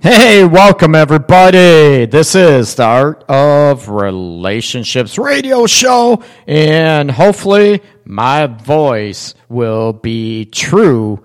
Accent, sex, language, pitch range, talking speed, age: American, male, English, 115-160 Hz, 95 wpm, 50-69